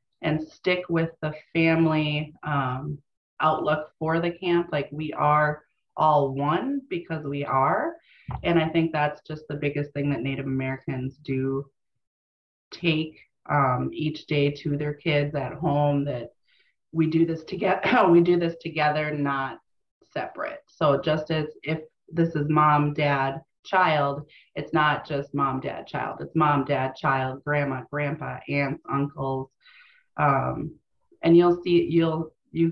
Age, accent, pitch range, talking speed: 30-49, American, 140-160 Hz, 145 wpm